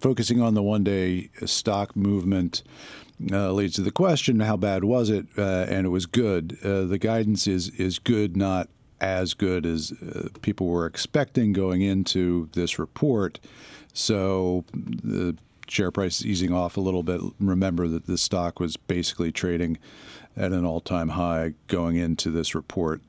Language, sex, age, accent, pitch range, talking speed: English, male, 50-69, American, 85-100 Hz, 170 wpm